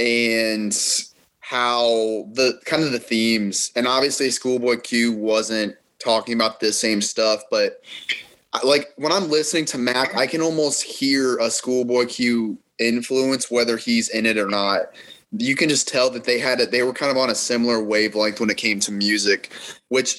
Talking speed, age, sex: 180 wpm, 20-39, male